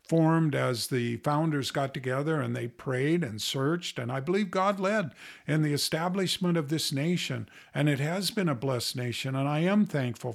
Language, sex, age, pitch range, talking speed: English, male, 50-69, 135-170 Hz, 190 wpm